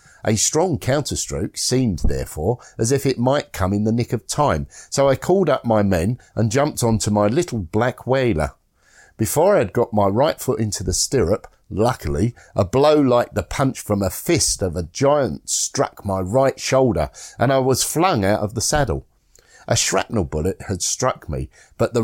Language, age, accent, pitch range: English, 50-69, British, 95-130 Hz